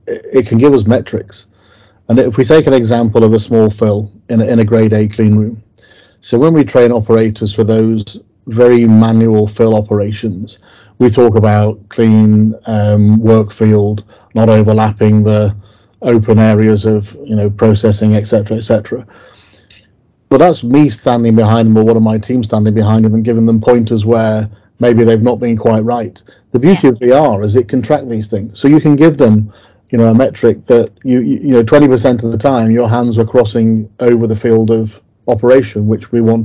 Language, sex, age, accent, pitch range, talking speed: English, male, 30-49, British, 110-120 Hz, 195 wpm